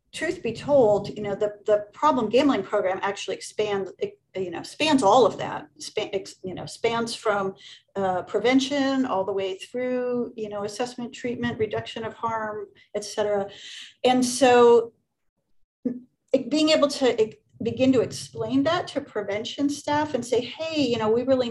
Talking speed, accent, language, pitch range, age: 155 wpm, American, English, 200-250 Hz, 40-59